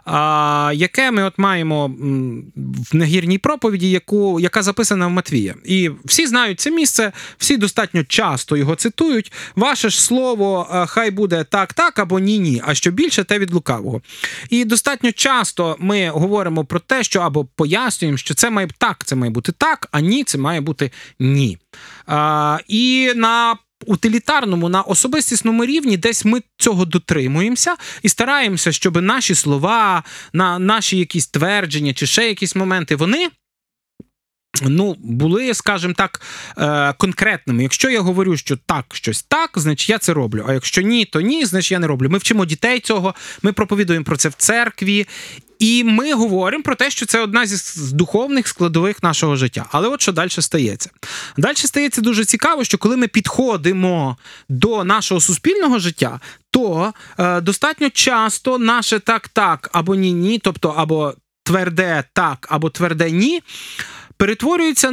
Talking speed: 150 wpm